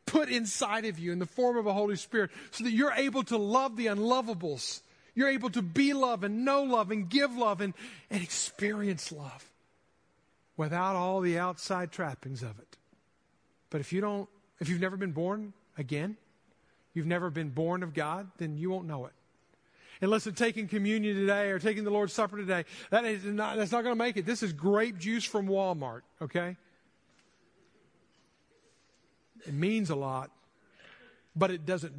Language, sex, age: English, male, 50-69